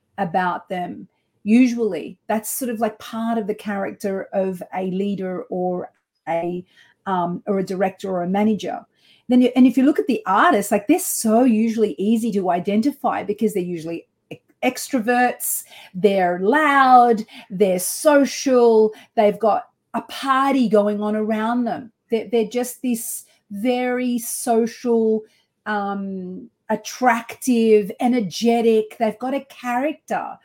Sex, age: female, 40-59